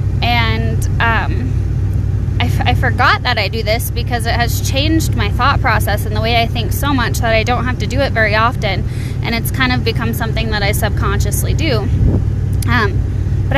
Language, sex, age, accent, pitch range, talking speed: English, female, 10-29, American, 105-120 Hz, 195 wpm